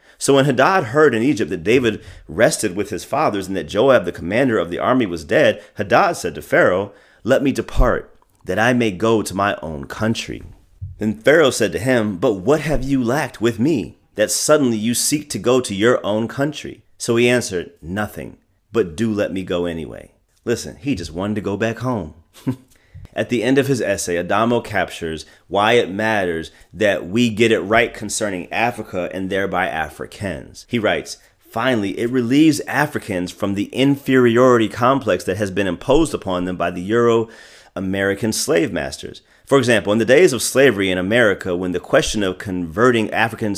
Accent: American